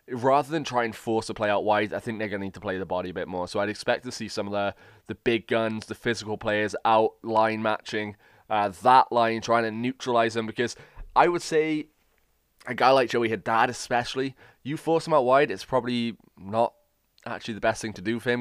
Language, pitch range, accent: English, 105-125 Hz, British